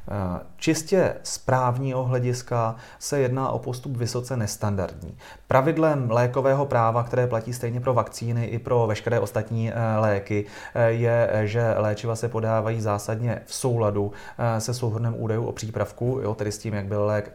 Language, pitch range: Czech, 105-120 Hz